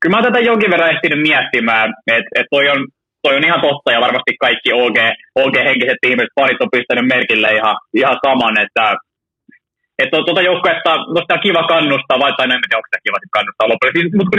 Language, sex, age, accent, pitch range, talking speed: Finnish, male, 20-39, native, 135-185 Hz, 200 wpm